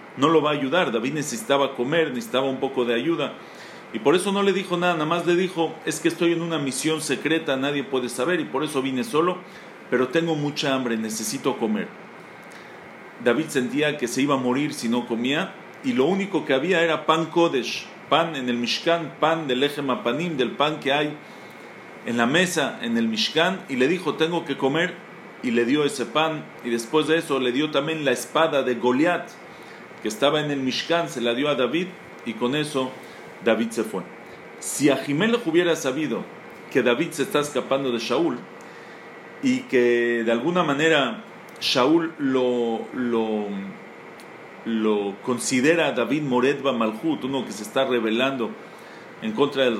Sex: male